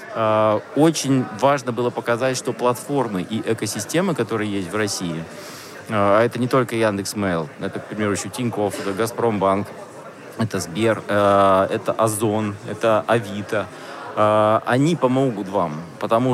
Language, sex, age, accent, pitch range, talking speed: Russian, male, 20-39, native, 105-125 Hz, 120 wpm